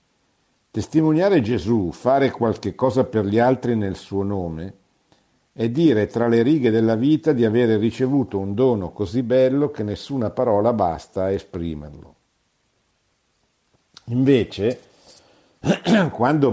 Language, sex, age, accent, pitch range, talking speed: Italian, male, 50-69, native, 85-120 Hz, 120 wpm